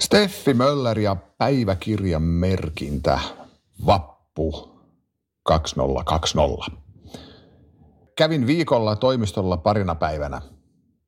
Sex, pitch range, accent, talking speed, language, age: male, 80-100 Hz, native, 65 wpm, Finnish, 50-69